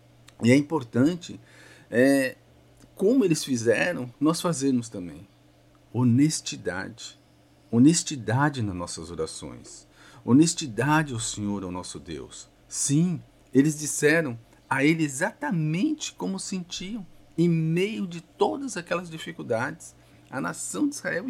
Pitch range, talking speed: 125-205 Hz, 105 wpm